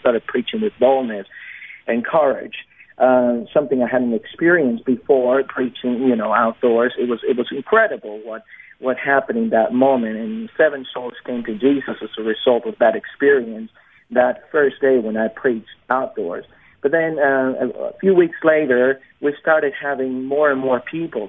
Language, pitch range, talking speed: English, 120-145 Hz, 170 wpm